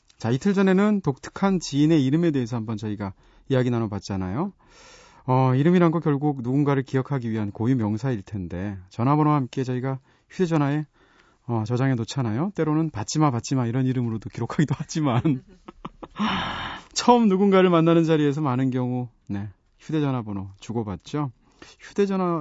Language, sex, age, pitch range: Korean, male, 30-49, 110-170 Hz